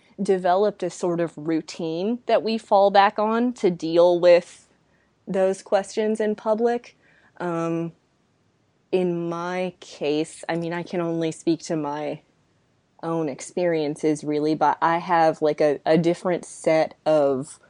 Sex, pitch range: female, 155-180 Hz